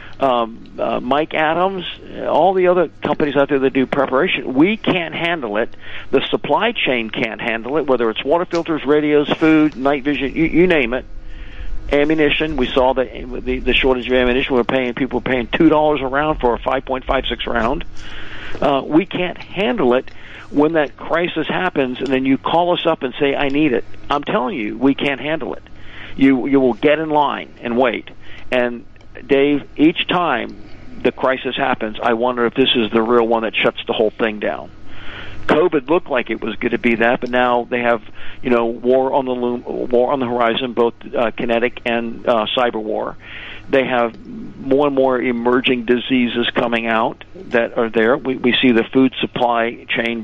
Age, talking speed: 50-69, 195 wpm